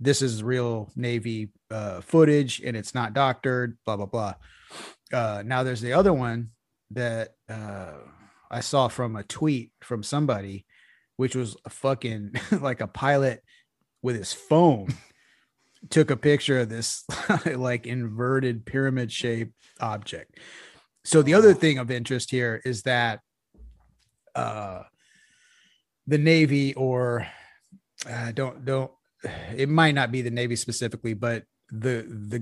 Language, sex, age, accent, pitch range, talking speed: English, male, 30-49, American, 110-135 Hz, 135 wpm